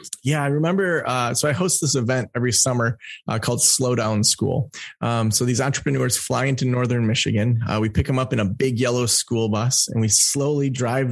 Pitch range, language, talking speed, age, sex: 110-135 Hz, English, 205 wpm, 20-39, male